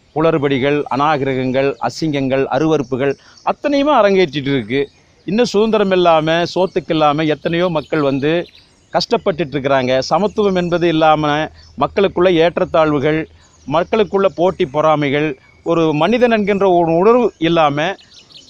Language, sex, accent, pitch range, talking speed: Tamil, male, native, 150-200 Hz, 95 wpm